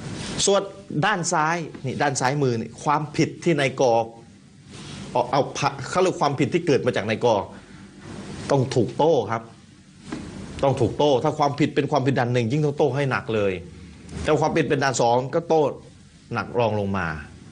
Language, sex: Thai, male